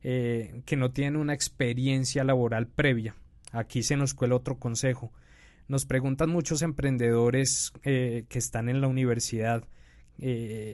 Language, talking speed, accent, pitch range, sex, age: Spanish, 140 wpm, Colombian, 120-150 Hz, male, 20-39